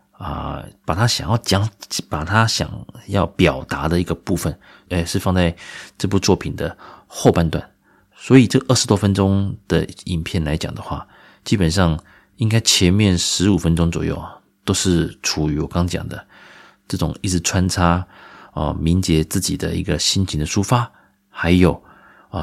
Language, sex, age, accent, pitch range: Chinese, male, 30-49, native, 85-100 Hz